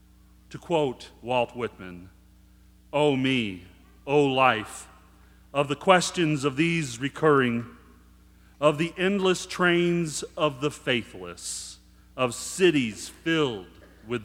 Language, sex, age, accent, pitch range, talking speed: English, male, 40-59, American, 95-155 Hz, 105 wpm